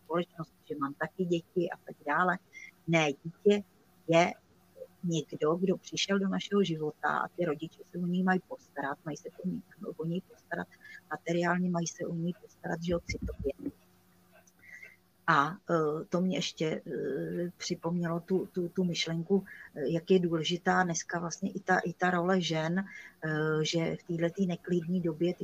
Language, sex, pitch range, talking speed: Czech, female, 165-190 Hz, 165 wpm